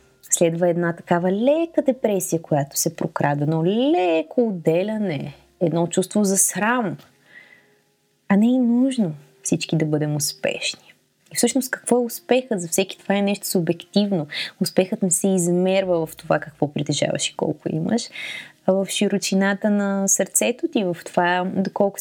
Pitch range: 175-230 Hz